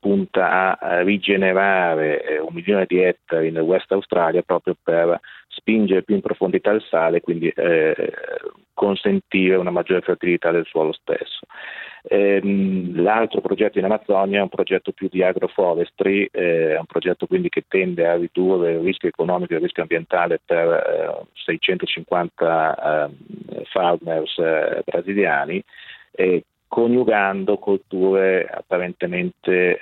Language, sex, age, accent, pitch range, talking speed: Italian, male, 40-59, native, 90-135 Hz, 135 wpm